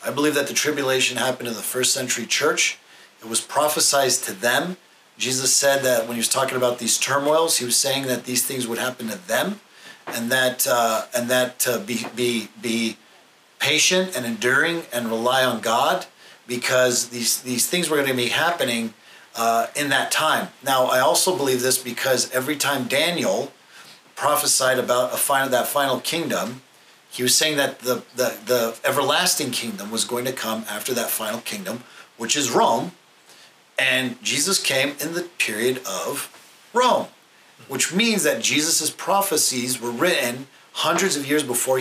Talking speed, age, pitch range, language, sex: 170 wpm, 40-59, 120-145 Hz, English, male